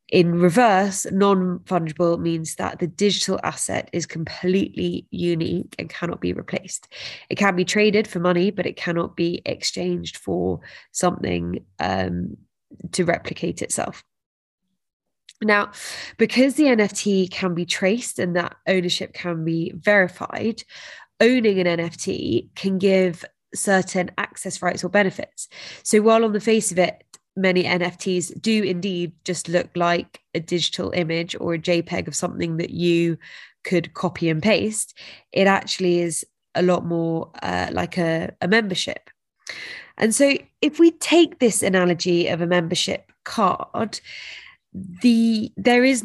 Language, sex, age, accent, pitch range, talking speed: English, female, 20-39, British, 170-205 Hz, 140 wpm